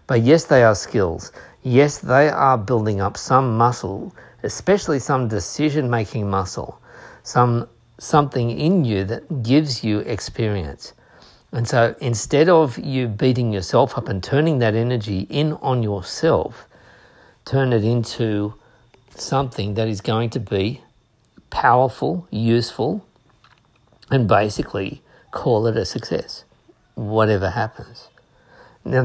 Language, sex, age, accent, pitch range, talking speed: English, male, 50-69, Australian, 110-140 Hz, 120 wpm